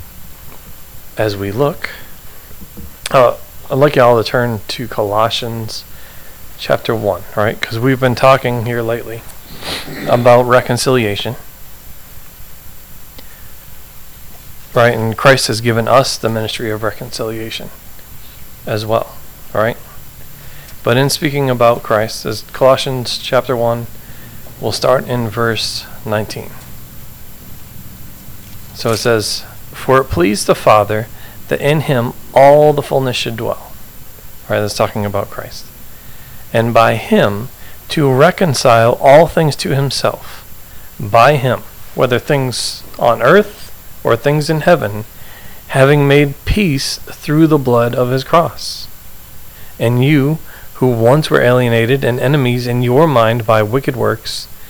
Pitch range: 110-135 Hz